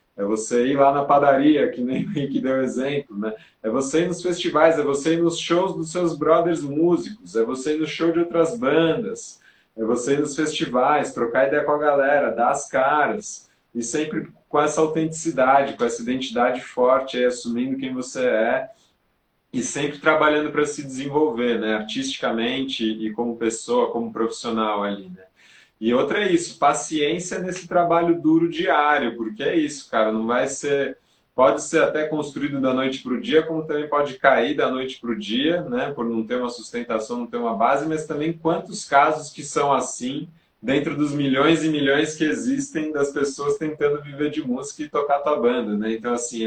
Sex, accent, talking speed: male, Brazilian, 190 wpm